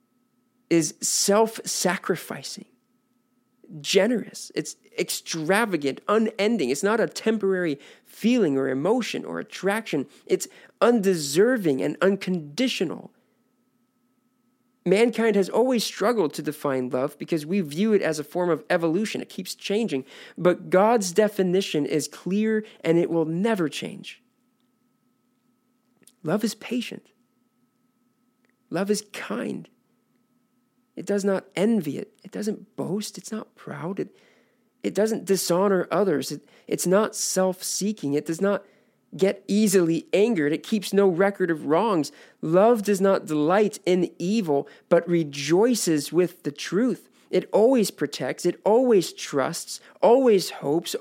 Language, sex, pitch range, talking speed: English, male, 175-250 Hz, 125 wpm